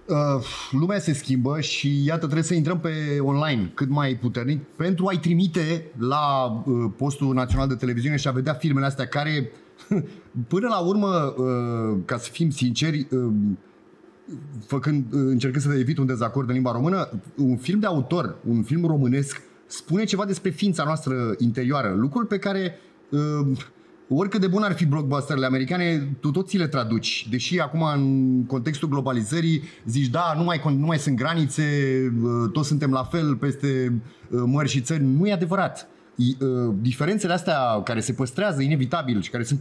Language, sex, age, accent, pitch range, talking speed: Romanian, male, 30-49, native, 130-170 Hz, 175 wpm